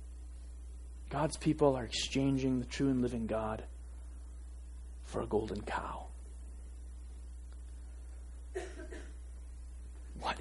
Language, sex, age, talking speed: English, male, 30-49, 80 wpm